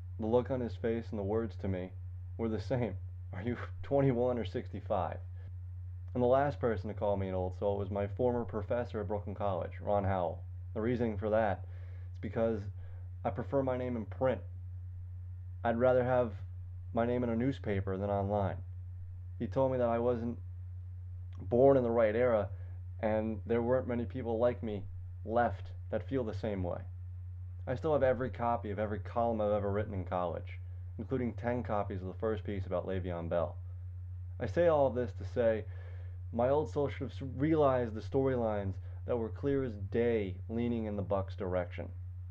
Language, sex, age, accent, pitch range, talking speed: English, male, 20-39, American, 90-120 Hz, 185 wpm